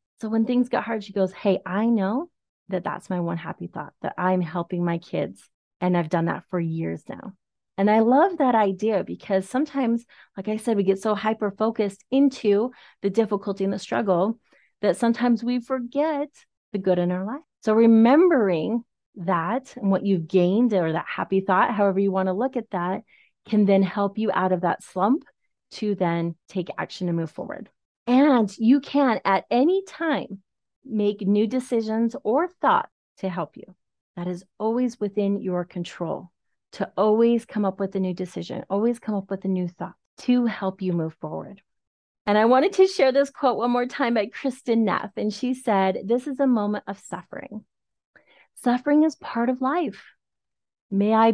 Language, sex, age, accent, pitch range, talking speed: English, female, 30-49, American, 190-245 Hz, 185 wpm